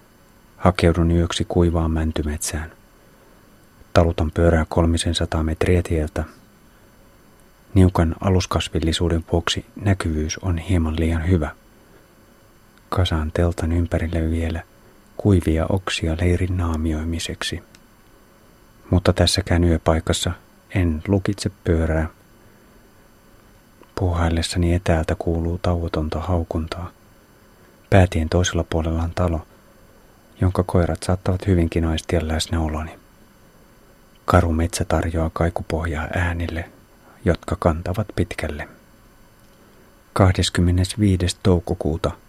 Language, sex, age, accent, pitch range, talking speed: Finnish, male, 30-49, native, 80-95 Hz, 80 wpm